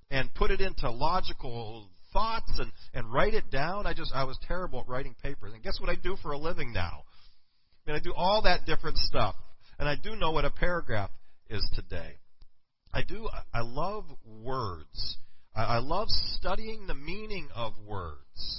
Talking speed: 195 wpm